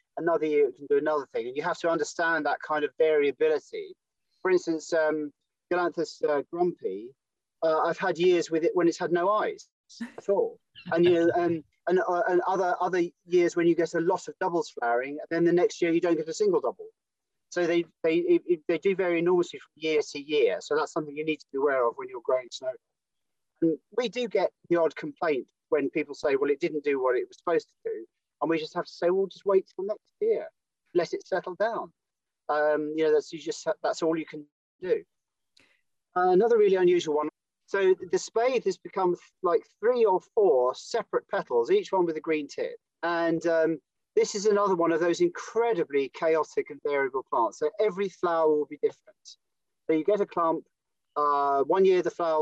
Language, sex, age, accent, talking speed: English, male, 40-59, British, 215 wpm